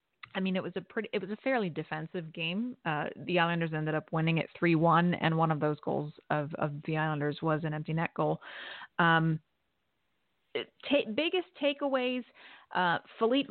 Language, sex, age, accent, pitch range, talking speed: English, female, 30-49, American, 155-195 Hz, 180 wpm